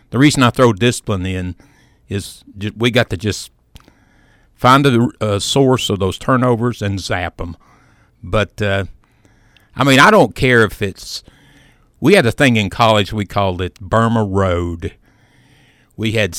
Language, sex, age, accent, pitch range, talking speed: English, male, 60-79, American, 100-125 Hz, 155 wpm